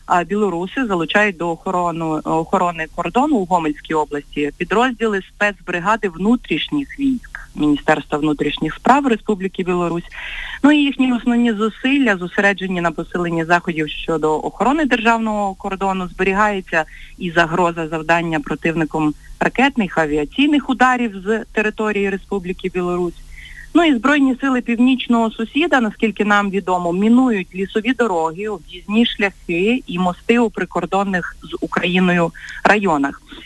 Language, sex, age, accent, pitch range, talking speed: Ukrainian, female, 30-49, native, 175-235 Hz, 115 wpm